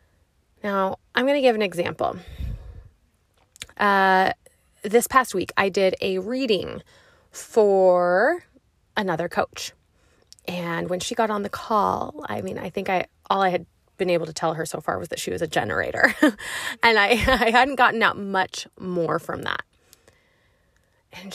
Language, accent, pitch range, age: English, American, 180-245 Hz, 20-39